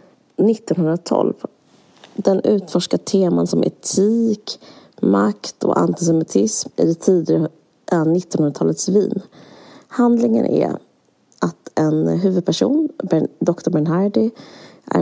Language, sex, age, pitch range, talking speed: Swedish, female, 30-49, 165-230 Hz, 90 wpm